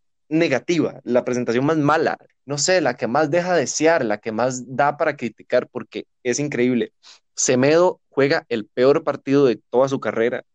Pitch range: 115-140 Hz